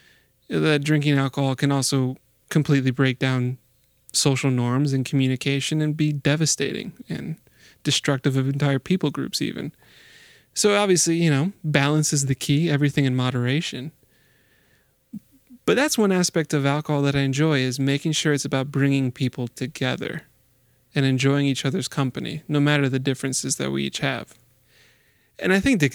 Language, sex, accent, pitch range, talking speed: English, male, American, 130-155 Hz, 155 wpm